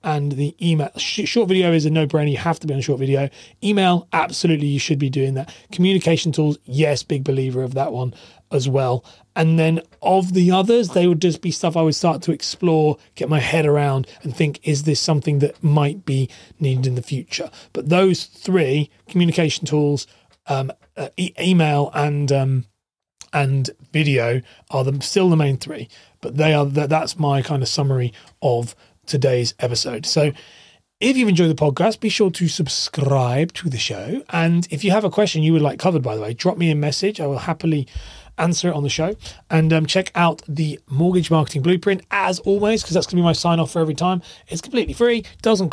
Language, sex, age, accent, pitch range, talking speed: English, male, 30-49, British, 140-175 Hz, 205 wpm